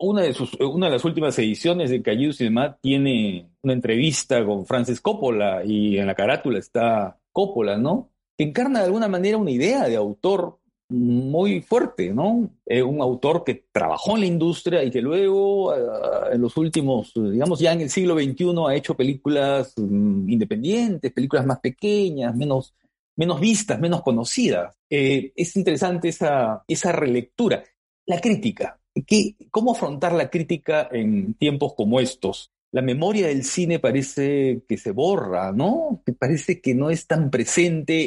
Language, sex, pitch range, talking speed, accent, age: Spanish, male, 125-185 Hz, 160 wpm, Mexican, 50-69